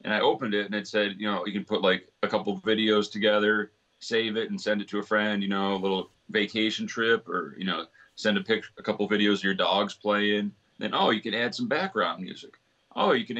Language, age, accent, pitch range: Danish, 30-49, American, 105-130 Hz